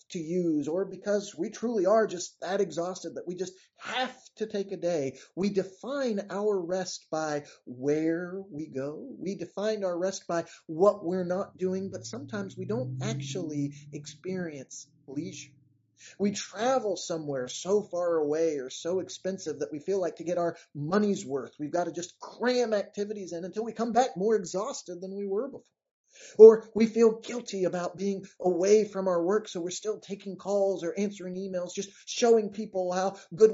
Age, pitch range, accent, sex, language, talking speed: 30-49, 150-205 Hz, American, male, English, 180 wpm